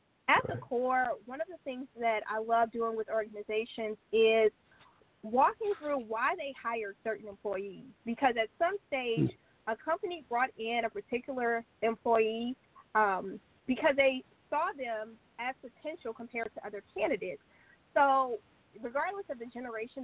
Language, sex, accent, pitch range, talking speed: English, female, American, 215-270 Hz, 145 wpm